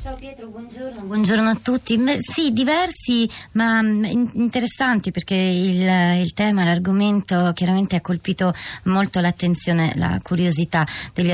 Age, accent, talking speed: 20-39, native, 120 wpm